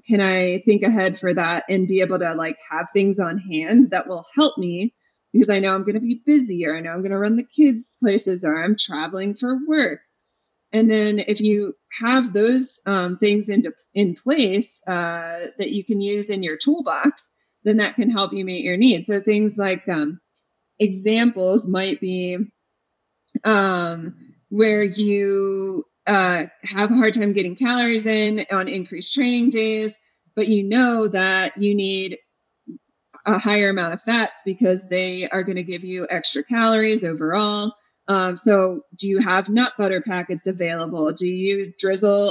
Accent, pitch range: American, 185-225 Hz